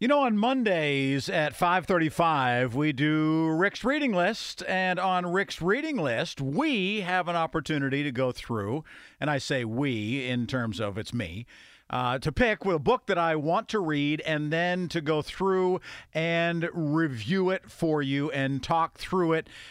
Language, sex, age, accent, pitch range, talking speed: English, male, 50-69, American, 145-190 Hz, 170 wpm